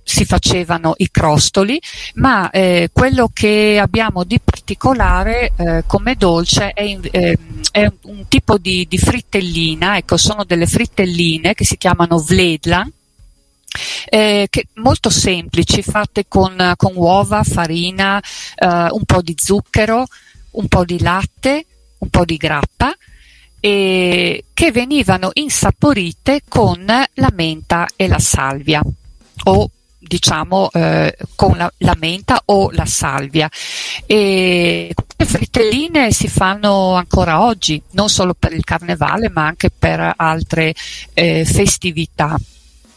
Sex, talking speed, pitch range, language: female, 125 wpm, 165-205 Hz, Italian